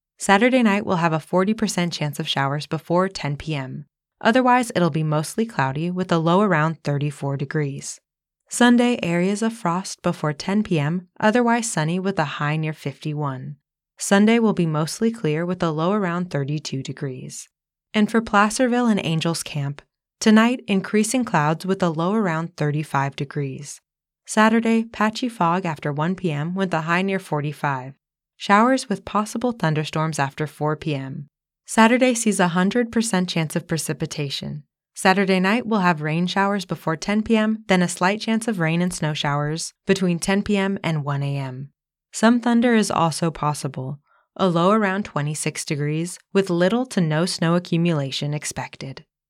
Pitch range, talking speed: 150-205 Hz, 155 wpm